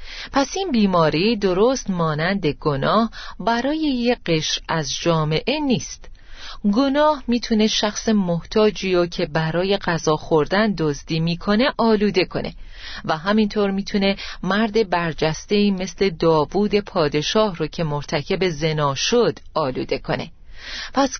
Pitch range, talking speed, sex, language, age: 160-230 Hz, 115 wpm, female, Persian, 40-59